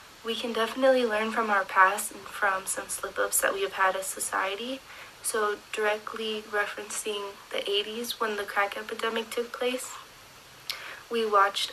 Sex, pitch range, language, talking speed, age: female, 200-230 Hz, English, 160 wpm, 20-39